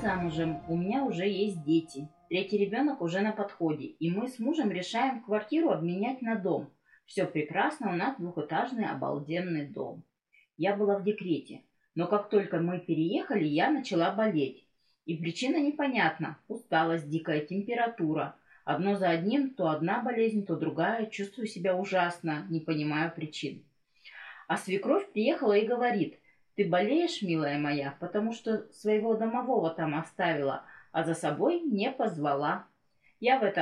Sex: female